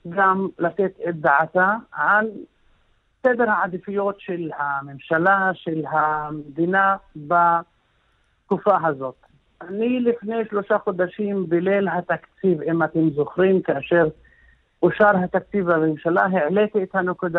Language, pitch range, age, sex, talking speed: English, 155-195 Hz, 50-69, male, 65 wpm